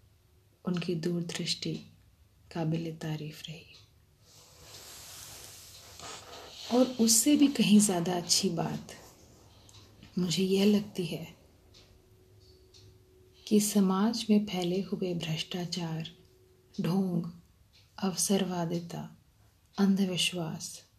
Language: Hindi